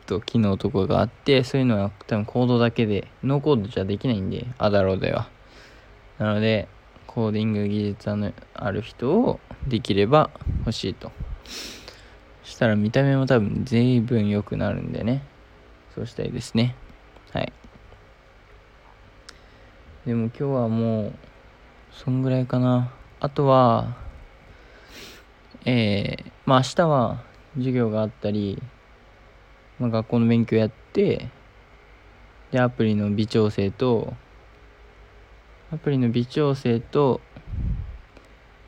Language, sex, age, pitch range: Japanese, male, 20-39, 100-125 Hz